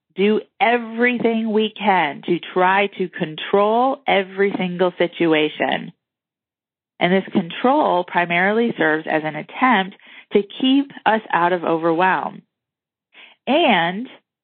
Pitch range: 170-220 Hz